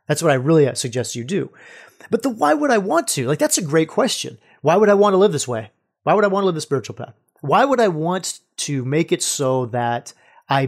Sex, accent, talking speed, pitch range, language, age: male, American, 260 wpm, 140-190 Hz, English, 40-59